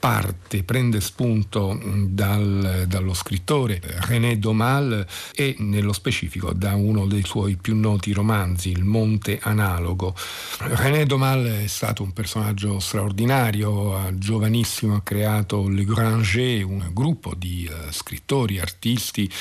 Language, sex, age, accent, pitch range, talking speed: Italian, male, 50-69, native, 95-110 Hz, 120 wpm